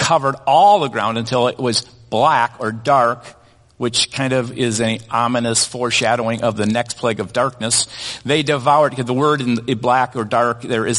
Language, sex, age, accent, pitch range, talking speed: English, male, 50-69, American, 120-160 Hz, 180 wpm